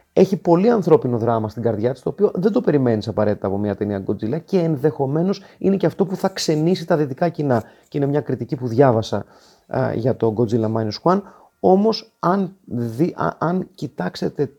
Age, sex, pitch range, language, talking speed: 30-49, male, 115-155 Hz, Greek, 190 wpm